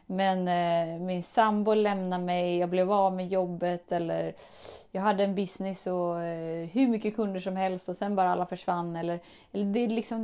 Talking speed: 180 wpm